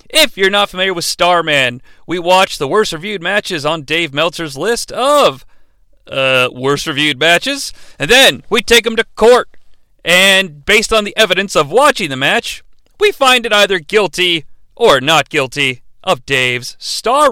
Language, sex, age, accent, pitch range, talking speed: English, male, 40-59, American, 165-235 Hz, 165 wpm